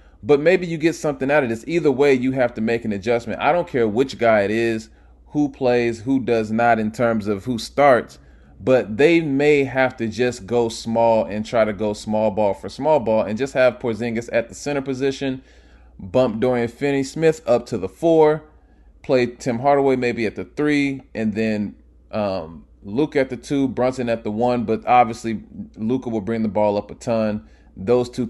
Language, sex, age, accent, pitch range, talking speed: English, male, 20-39, American, 105-130 Hz, 200 wpm